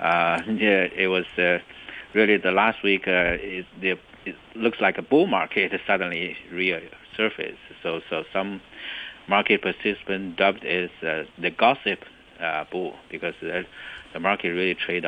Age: 60-79